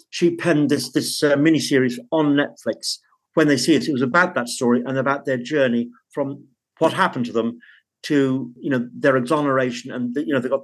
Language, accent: English, British